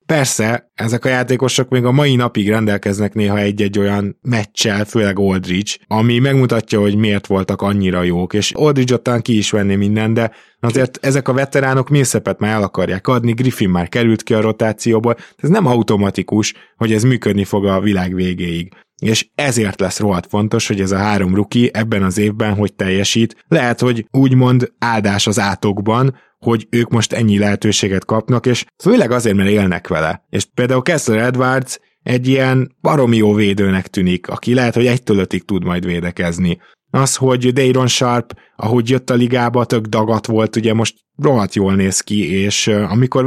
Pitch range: 100-125 Hz